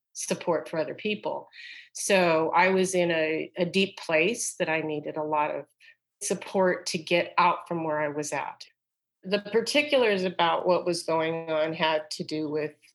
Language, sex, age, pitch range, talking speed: English, female, 40-59, 165-210 Hz, 175 wpm